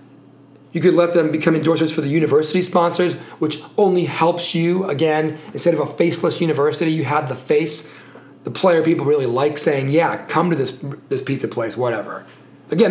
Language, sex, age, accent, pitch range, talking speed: English, male, 30-49, American, 150-190 Hz, 180 wpm